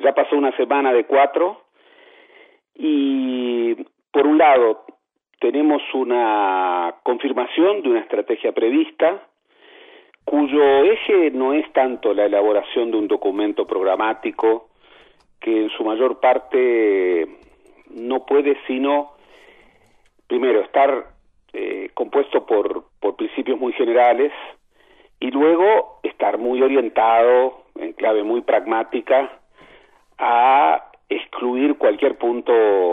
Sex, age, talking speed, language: male, 40-59, 105 wpm, Spanish